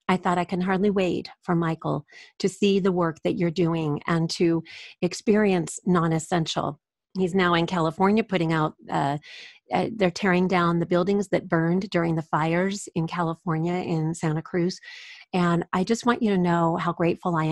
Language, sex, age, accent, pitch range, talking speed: English, female, 40-59, American, 165-195 Hz, 175 wpm